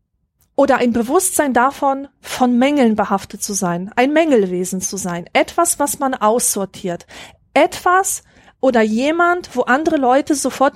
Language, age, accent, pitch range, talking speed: German, 40-59, German, 215-285 Hz, 135 wpm